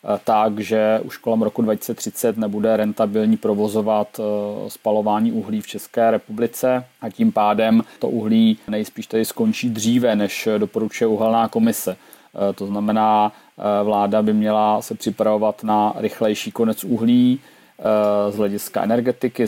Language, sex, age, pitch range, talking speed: Czech, male, 30-49, 105-115 Hz, 125 wpm